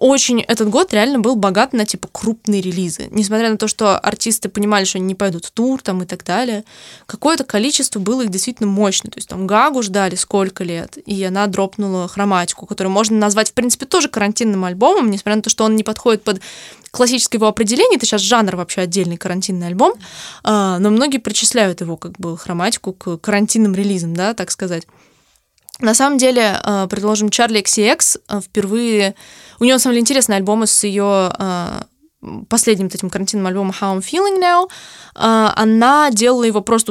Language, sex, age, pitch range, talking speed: Russian, female, 20-39, 195-235 Hz, 175 wpm